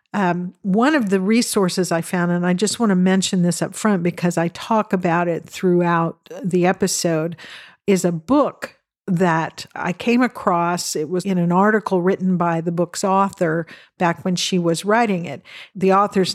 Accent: American